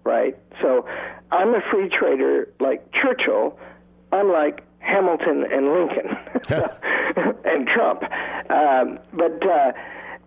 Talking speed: 100 wpm